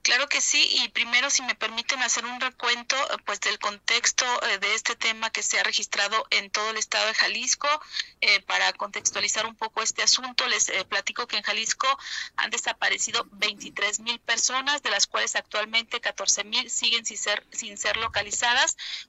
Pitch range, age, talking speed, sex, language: 195-235 Hz, 40-59, 180 wpm, female, Spanish